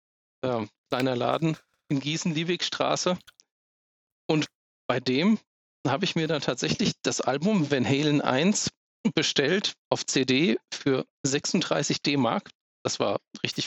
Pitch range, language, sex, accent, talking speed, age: 125-155 Hz, German, male, German, 115 wpm, 40-59